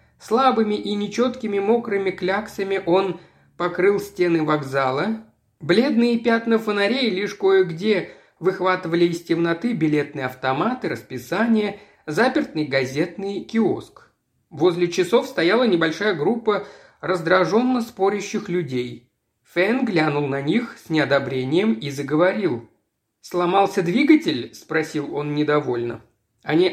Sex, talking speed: male, 105 wpm